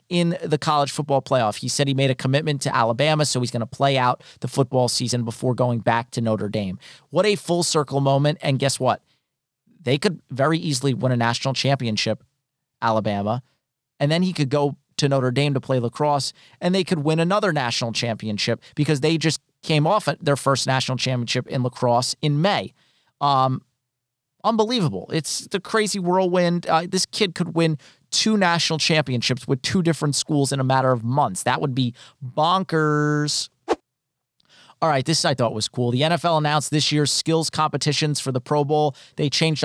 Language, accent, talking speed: English, American, 190 wpm